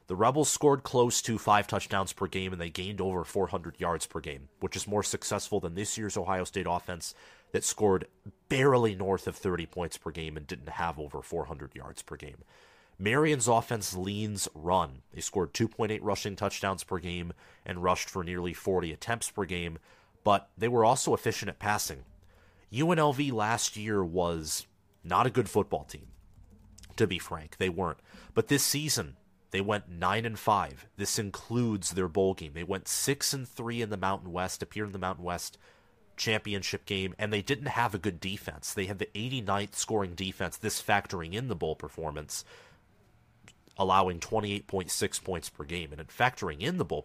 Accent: American